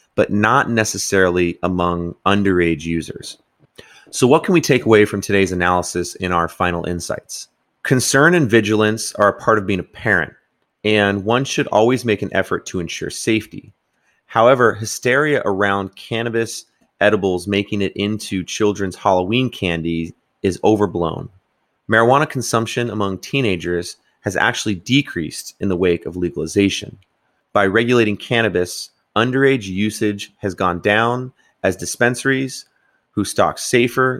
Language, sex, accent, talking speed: English, male, American, 135 wpm